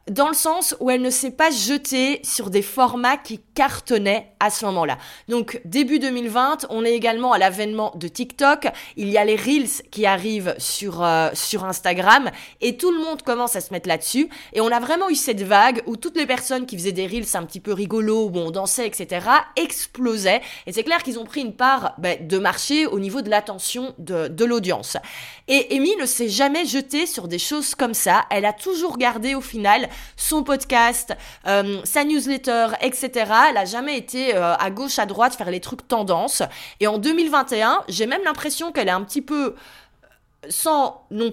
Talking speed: 200 wpm